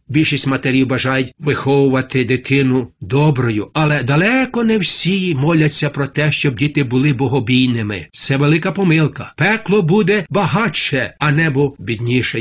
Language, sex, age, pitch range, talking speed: Ukrainian, male, 60-79, 135-180 Hz, 125 wpm